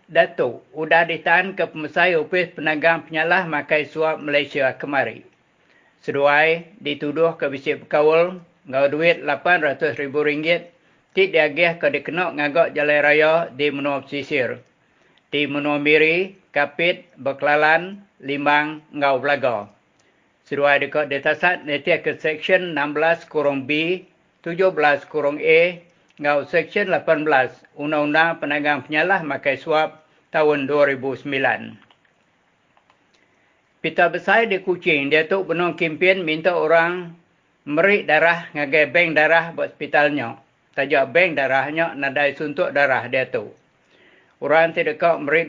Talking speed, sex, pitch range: 115 wpm, male, 145-170 Hz